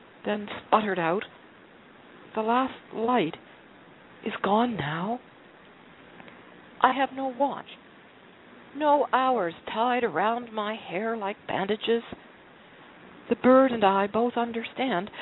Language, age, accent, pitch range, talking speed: English, 60-79, American, 200-250 Hz, 105 wpm